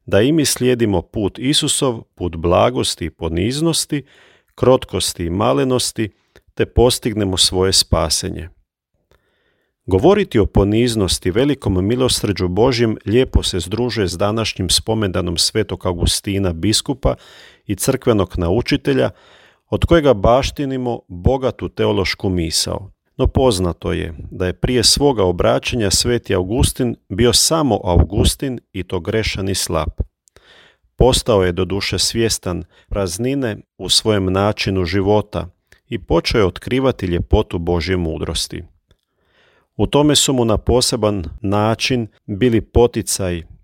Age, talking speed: 40-59, 115 wpm